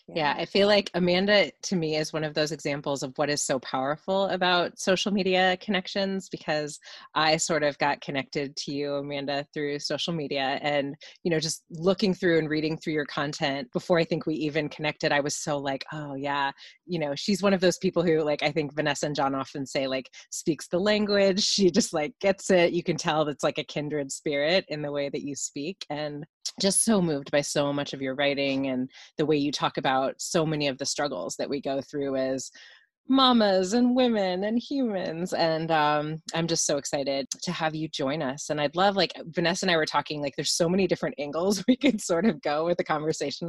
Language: English